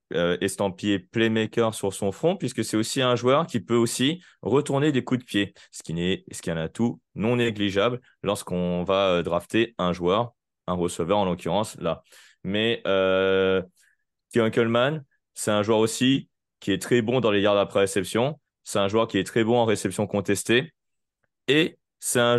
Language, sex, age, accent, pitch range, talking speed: French, male, 20-39, French, 95-120 Hz, 185 wpm